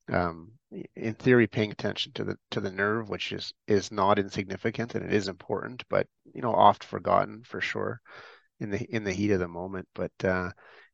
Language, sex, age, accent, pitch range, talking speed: English, male, 30-49, American, 95-115 Hz, 195 wpm